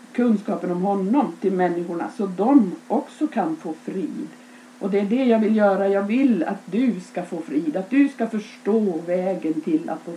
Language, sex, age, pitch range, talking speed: Swedish, female, 50-69, 175-245 Hz, 195 wpm